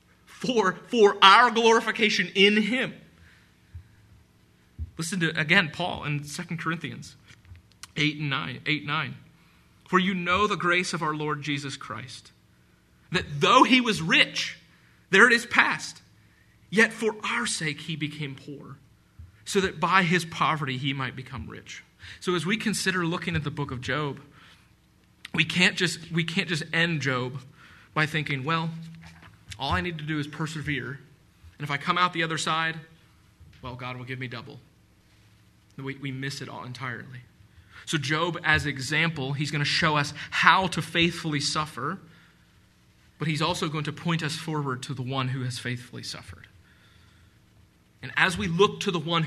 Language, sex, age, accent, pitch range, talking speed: English, male, 30-49, American, 125-165 Hz, 165 wpm